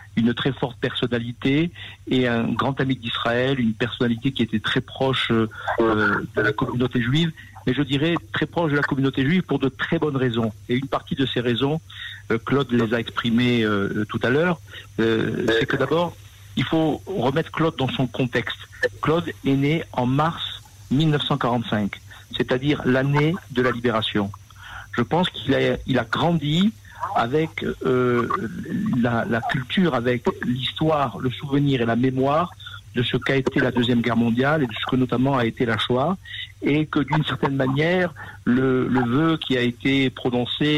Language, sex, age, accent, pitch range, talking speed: French, male, 50-69, French, 115-140 Hz, 165 wpm